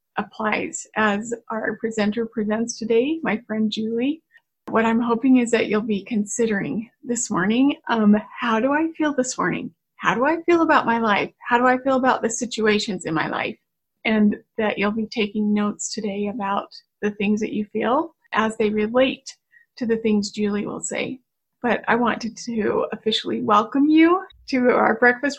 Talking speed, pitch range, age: 175 wpm, 215-255 Hz, 30-49